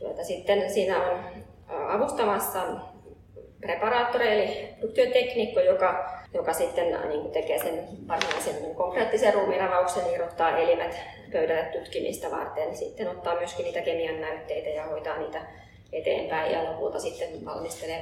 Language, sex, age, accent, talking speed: Finnish, female, 20-39, native, 125 wpm